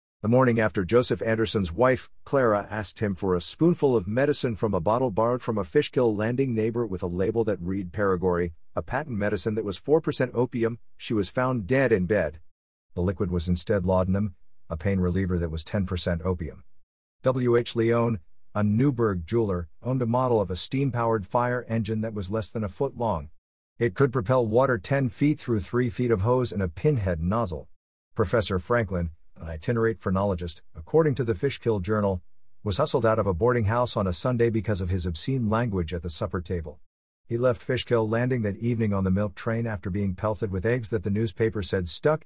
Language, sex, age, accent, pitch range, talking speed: English, male, 50-69, American, 95-125 Hz, 195 wpm